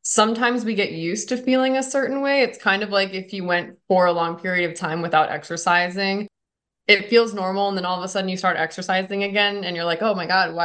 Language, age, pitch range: English, 20-39, 165-200 Hz